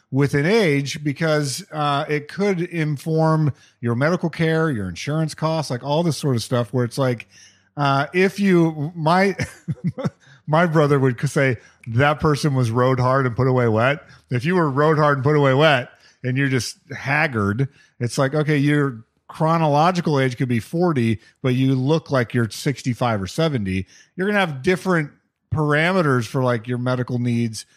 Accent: American